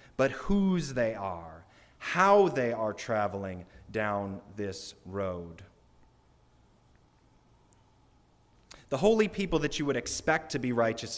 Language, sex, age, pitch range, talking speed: English, male, 30-49, 105-150 Hz, 115 wpm